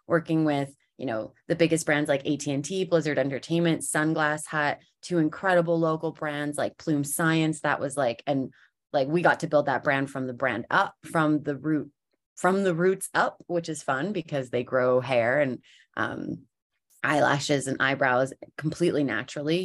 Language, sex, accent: English, female, American